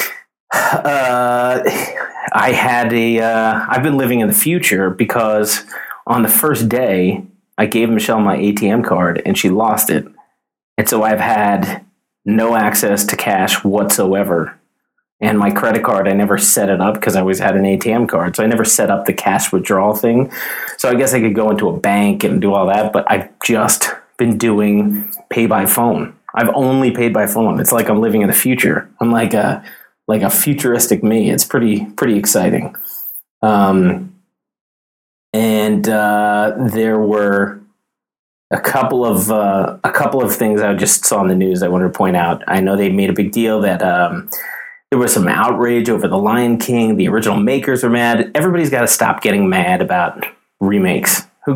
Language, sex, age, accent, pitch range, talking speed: English, male, 30-49, American, 105-125 Hz, 185 wpm